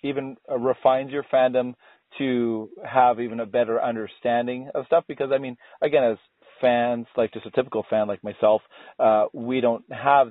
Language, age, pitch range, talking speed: English, 40-59, 115-130 Hz, 170 wpm